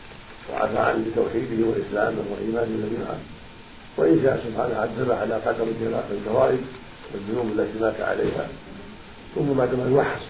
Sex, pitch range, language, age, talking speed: male, 115-135 Hz, Arabic, 50-69, 120 wpm